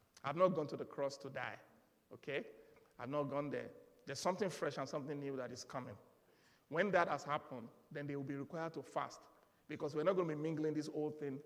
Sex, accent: male, Nigerian